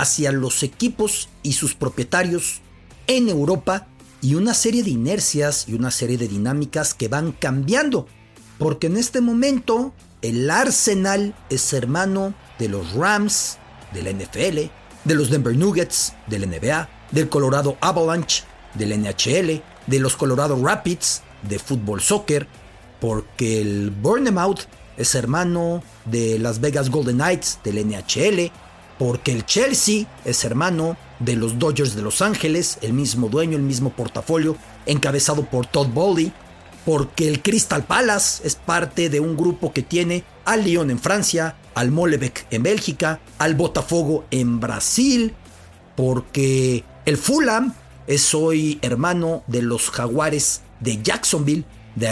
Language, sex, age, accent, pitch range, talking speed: English, male, 50-69, Mexican, 120-175 Hz, 140 wpm